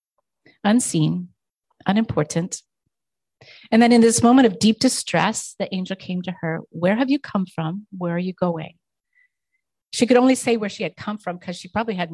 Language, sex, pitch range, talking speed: English, female, 165-225 Hz, 185 wpm